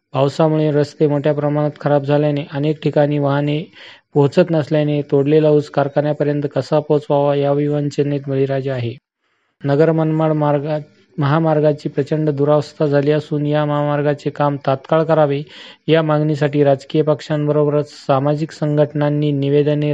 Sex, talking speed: male, 105 wpm